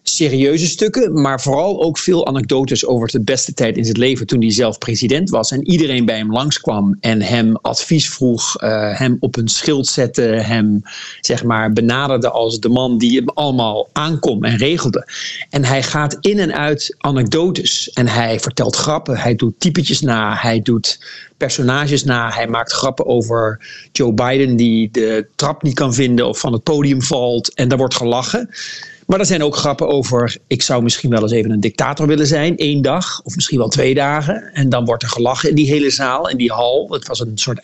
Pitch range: 120-150 Hz